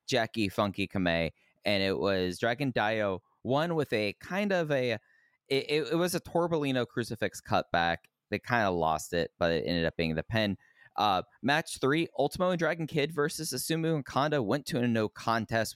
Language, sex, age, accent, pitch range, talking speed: English, male, 20-39, American, 95-125 Hz, 185 wpm